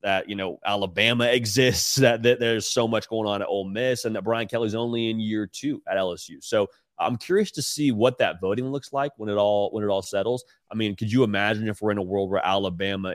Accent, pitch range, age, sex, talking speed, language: American, 95-115 Hz, 30-49, male, 245 wpm, English